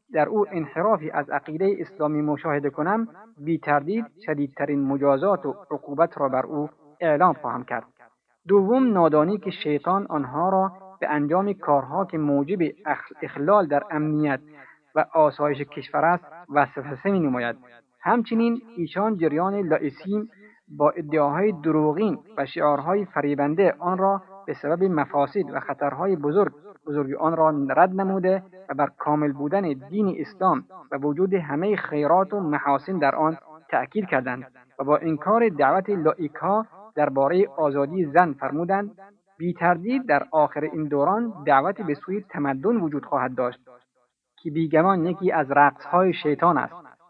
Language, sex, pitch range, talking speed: Persian, male, 145-190 Hz, 140 wpm